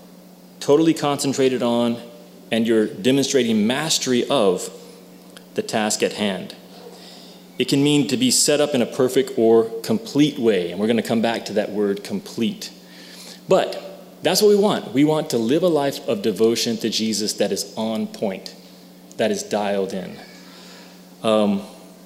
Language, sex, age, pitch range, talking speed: English, male, 30-49, 110-140 Hz, 160 wpm